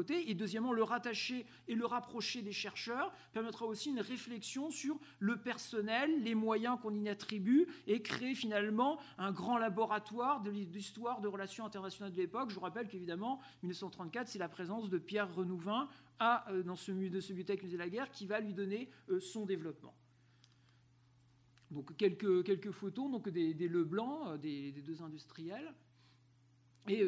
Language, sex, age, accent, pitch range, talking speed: French, male, 50-69, French, 180-235 Hz, 160 wpm